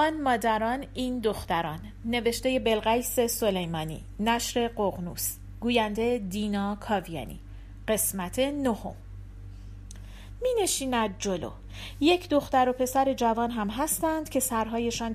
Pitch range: 175-250 Hz